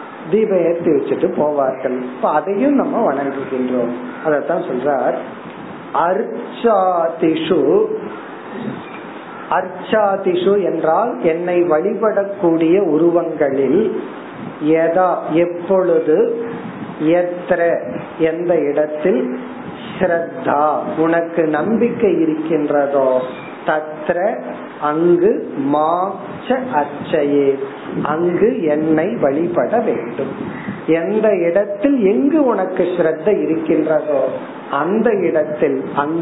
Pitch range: 155-200 Hz